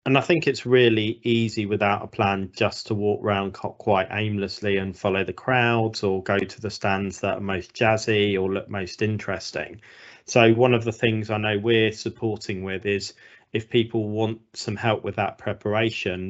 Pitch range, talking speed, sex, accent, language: 100-110 Hz, 190 wpm, male, British, English